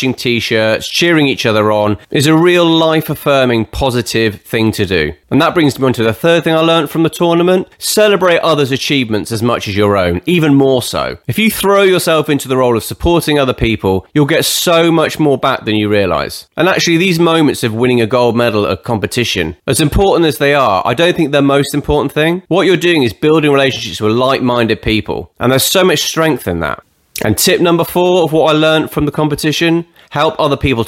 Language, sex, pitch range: English, male, 110-155 Hz